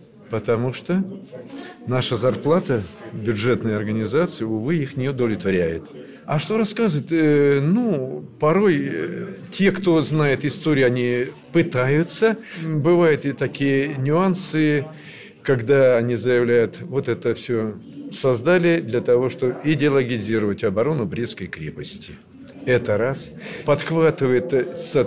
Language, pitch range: Russian, 115-160 Hz